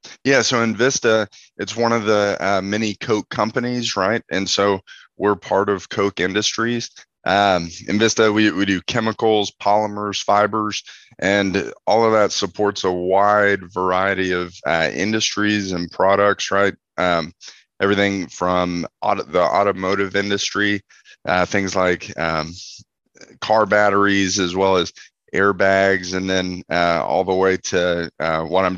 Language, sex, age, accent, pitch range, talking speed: English, male, 20-39, American, 90-100 Hz, 145 wpm